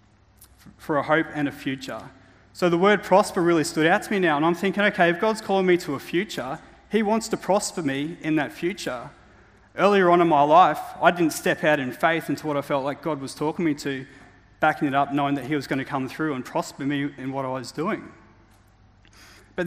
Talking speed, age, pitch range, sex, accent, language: 230 wpm, 30-49, 145-190 Hz, male, Australian, English